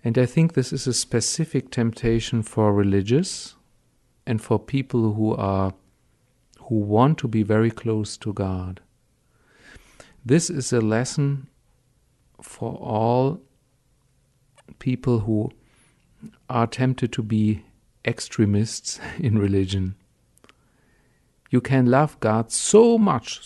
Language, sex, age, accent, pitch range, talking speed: English, male, 50-69, German, 100-125 Hz, 115 wpm